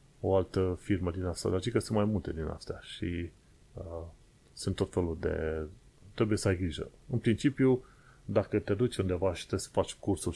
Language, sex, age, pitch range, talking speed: Romanian, male, 30-49, 90-110 Hz, 190 wpm